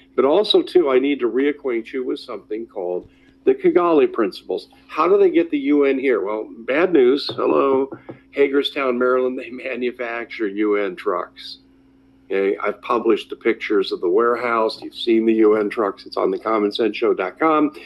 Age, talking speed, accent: 50-69, 160 wpm, American